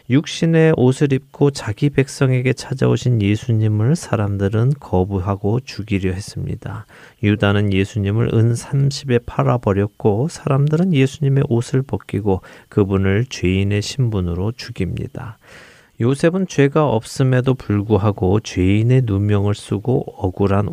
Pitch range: 105-135 Hz